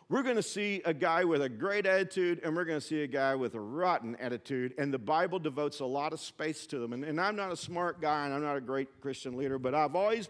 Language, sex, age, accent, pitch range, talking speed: English, male, 50-69, American, 135-170 Hz, 280 wpm